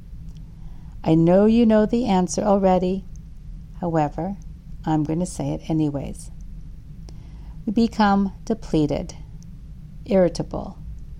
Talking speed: 95 wpm